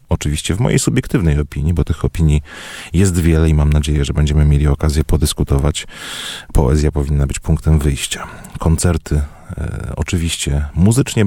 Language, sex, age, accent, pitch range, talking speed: Polish, male, 30-49, native, 75-95 Hz, 145 wpm